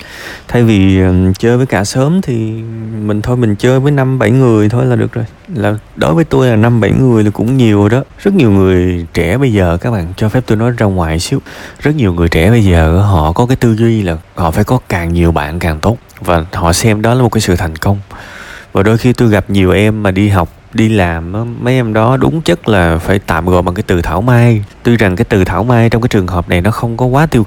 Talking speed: 260 wpm